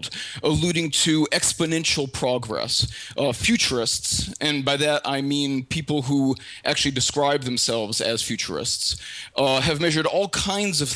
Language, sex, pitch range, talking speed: English, male, 130-165 Hz, 130 wpm